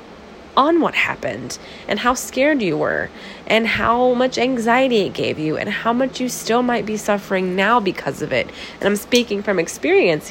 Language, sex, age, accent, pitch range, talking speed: English, female, 20-39, American, 180-240 Hz, 185 wpm